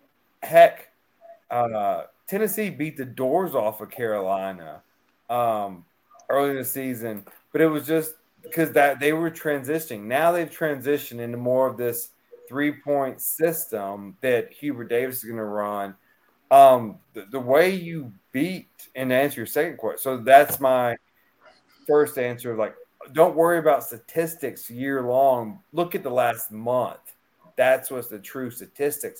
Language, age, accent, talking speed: English, 30-49, American, 145 wpm